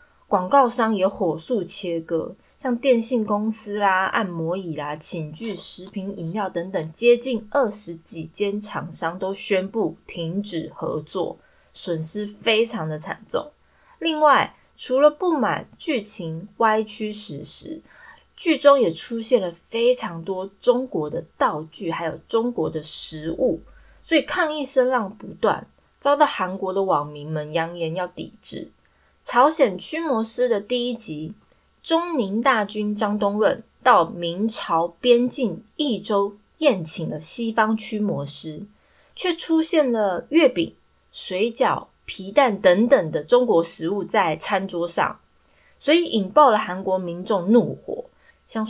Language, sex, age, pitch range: Chinese, female, 20-39, 175-250 Hz